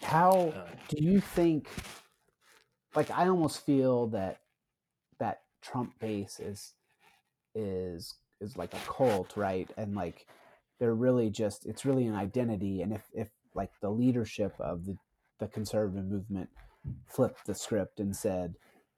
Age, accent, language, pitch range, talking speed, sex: 30-49, American, English, 110-150 Hz, 140 wpm, male